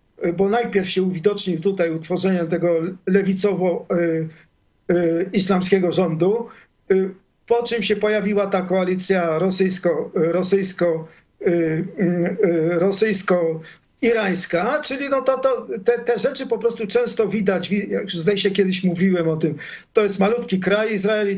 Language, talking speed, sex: Polish, 115 wpm, male